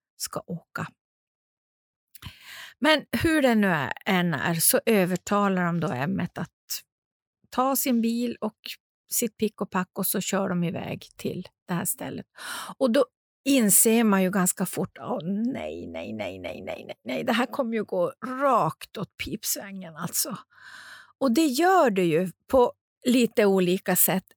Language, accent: Swedish, native